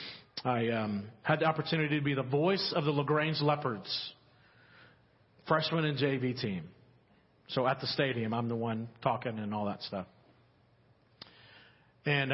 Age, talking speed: 40-59, 145 wpm